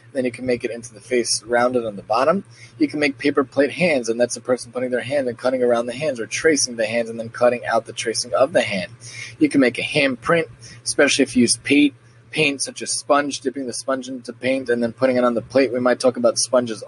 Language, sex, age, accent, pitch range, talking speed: English, male, 20-39, American, 120-135 Hz, 265 wpm